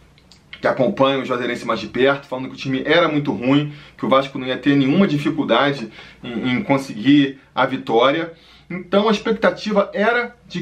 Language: Portuguese